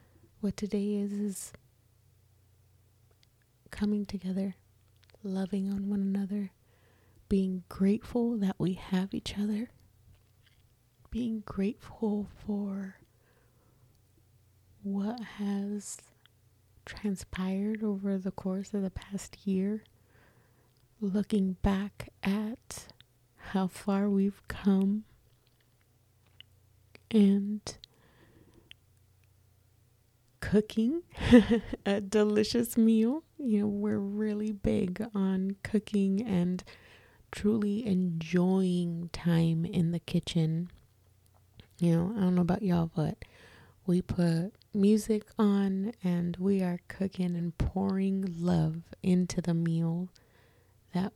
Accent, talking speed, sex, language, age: American, 95 wpm, female, English, 20-39